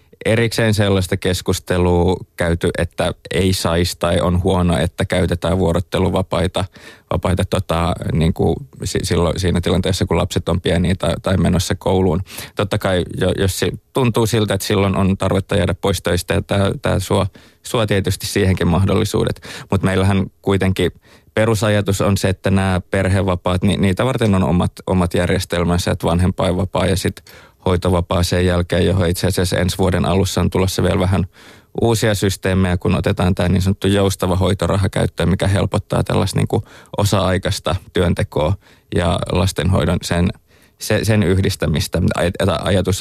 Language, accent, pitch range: Finnish, native, 90-100 Hz